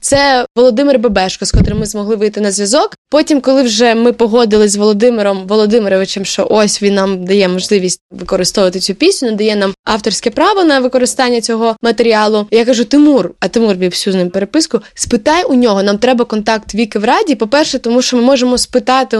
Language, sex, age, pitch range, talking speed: Ukrainian, female, 20-39, 210-275 Hz, 185 wpm